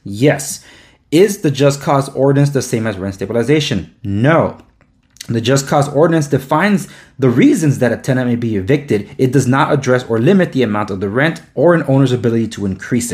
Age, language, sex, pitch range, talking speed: 30-49, English, male, 120-155 Hz, 190 wpm